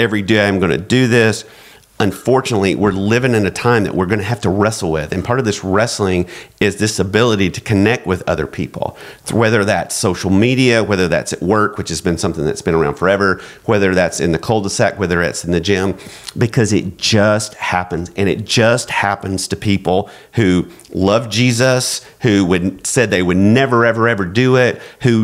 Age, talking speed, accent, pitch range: 40-59, 195 wpm, American, 95-120 Hz